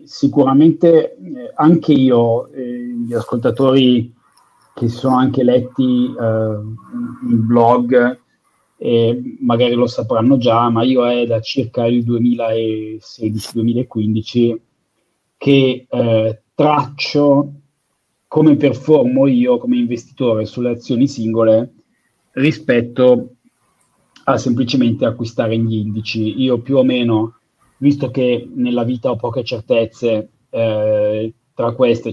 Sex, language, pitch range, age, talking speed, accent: male, Italian, 115-130 Hz, 30-49, 105 wpm, native